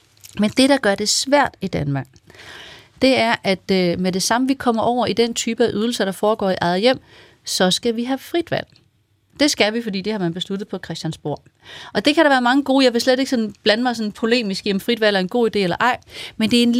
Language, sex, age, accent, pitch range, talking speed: Danish, female, 30-49, native, 190-255 Hz, 250 wpm